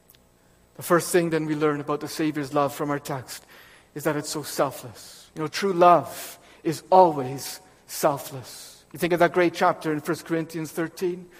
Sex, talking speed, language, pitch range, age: male, 185 wpm, English, 150-205 Hz, 50-69